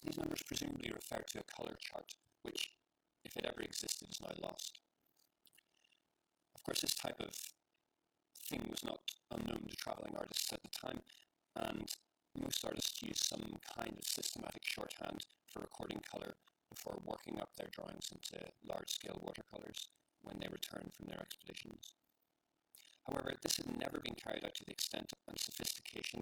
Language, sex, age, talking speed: English, male, 30-49, 160 wpm